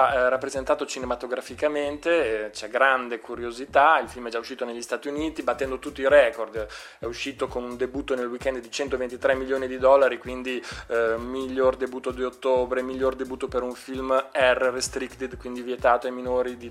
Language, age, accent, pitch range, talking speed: Italian, 20-39, native, 125-145 Hz, 165 wpm